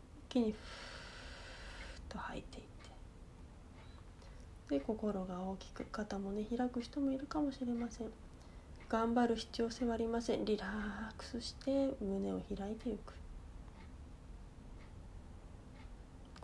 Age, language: 30-49, Japanese